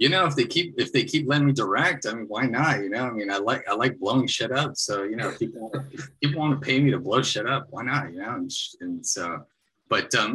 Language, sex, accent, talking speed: English, male, American, 290 wpm